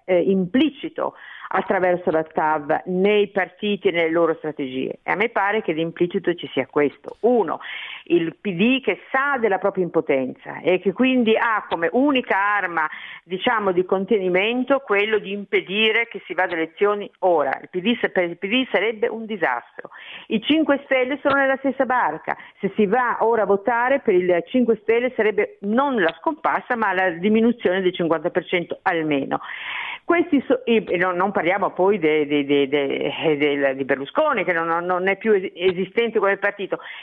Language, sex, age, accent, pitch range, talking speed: Italian, female, 50-69, native, 180-255 Hz, 155 wpm